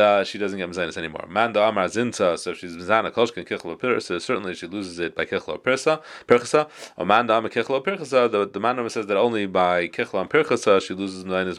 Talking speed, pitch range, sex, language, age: 160 wpm, 90-115 Hz, male, English, 30-49